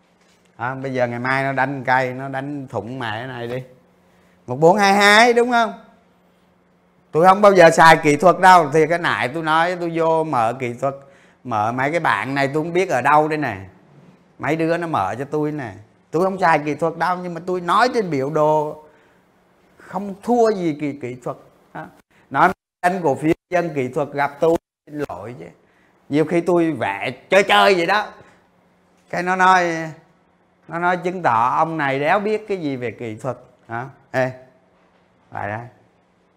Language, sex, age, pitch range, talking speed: Vietnamese, male, 20-39, 130-180 Hz, 195 wpm